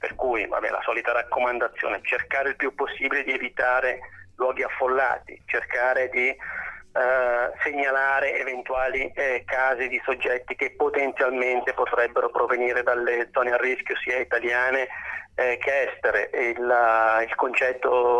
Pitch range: 120-135 Hz